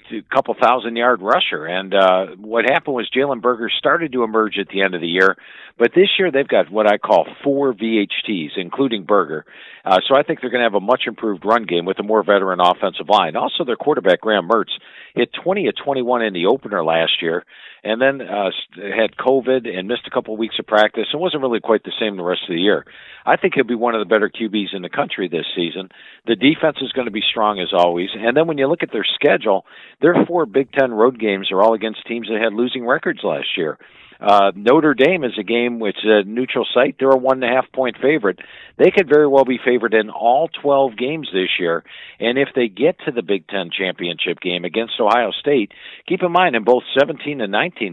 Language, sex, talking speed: English, male, 225 wpm